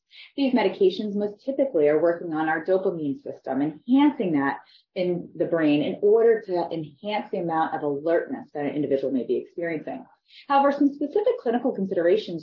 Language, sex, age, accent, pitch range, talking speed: English, female, 30-49, American, 170-250 Hz, 165 wpm